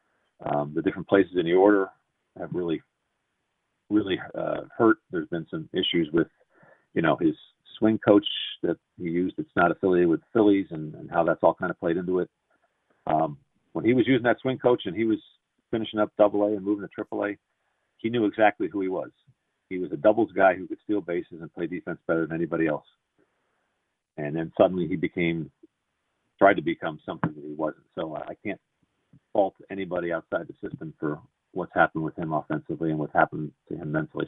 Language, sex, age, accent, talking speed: English, male, 50-69, American, 200 wpm